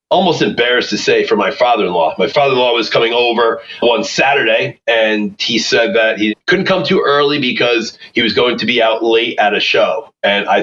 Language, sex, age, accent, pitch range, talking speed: English, male, 30-49, American, 115-170 Hz, 205 wpm